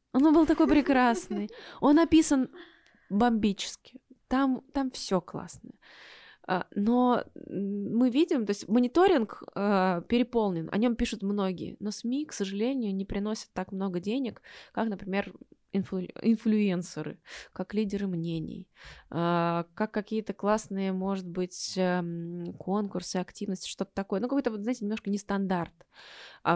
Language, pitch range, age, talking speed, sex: Russian, 195-245 Hz, 20-39, 120 wpm, female